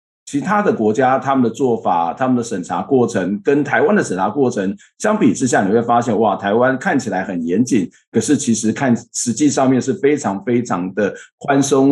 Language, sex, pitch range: Chinese, male, 120-155 Hz